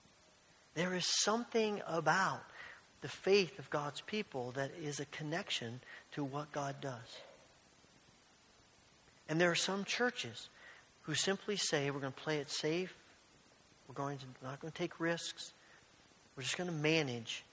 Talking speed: 150 wpm